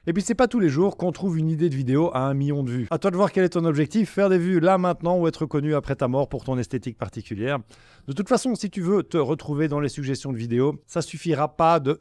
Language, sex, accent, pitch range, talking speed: French, male, French, 135-175 Hz, 300 wpm